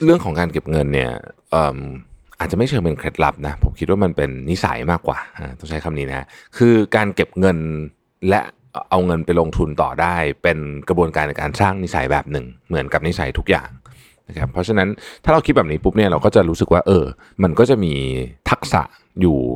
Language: Thai